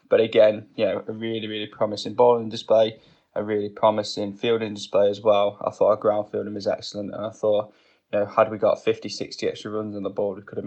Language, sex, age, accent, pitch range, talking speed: English, male, 10-29, British, 100-110 Hz, 235 wpm